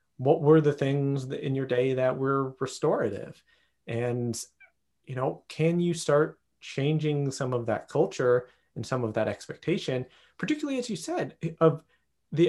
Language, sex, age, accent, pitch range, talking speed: English, male, 30-49, American, 125-170 Hz, 155 wpm